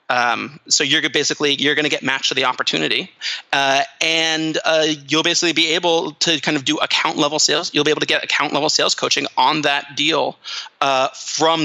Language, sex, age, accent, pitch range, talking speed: English, male, 30-49, American, 135-155 Hz, 205 wpm